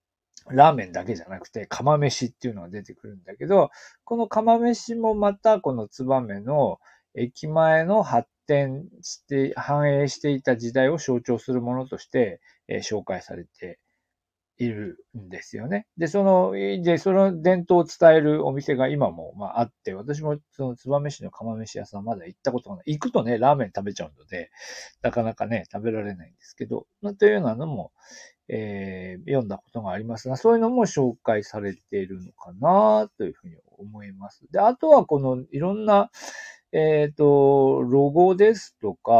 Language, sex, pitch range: Japanese, male, 115-190 Hz